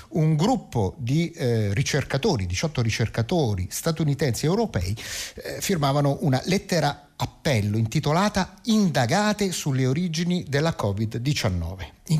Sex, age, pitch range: male, 50-69, 120-170 Hz